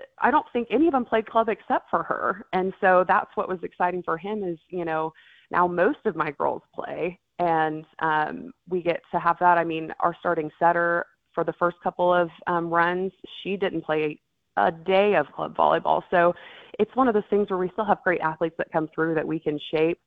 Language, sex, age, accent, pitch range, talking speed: English, female, 20-39, American, 160-195 Hz, 225 wpm